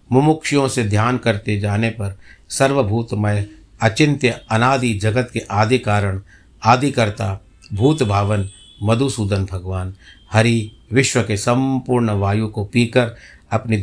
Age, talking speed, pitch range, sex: 60-79, 115 wpm, 105-135 Hz, male